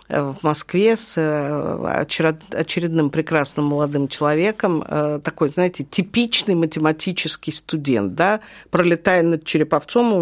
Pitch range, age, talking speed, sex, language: 150-200 Hz, 50-69, 95 wpm, female, Russian